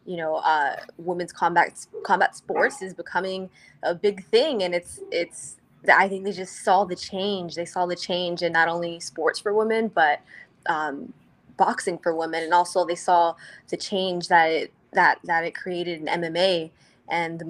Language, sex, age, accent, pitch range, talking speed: English, female, 20-39, American, 170-195 Hz, 180 wpm